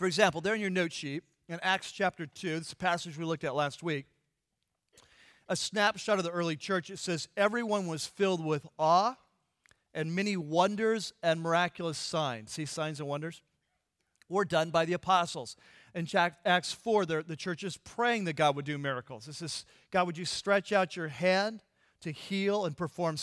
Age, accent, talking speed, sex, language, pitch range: 40-59, American, 185 wpm, male, English, 155-195 Hz